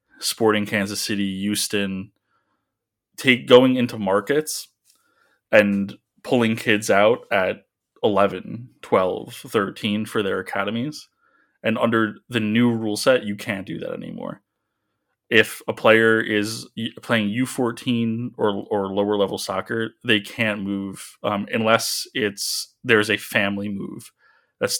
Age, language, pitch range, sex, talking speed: 20-39, English, 100-115 Hz, male, 125 wpm